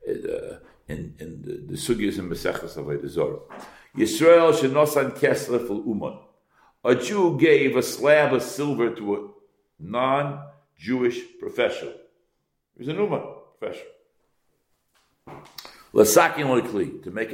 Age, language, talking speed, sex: 60-79, English, 120 wpm, male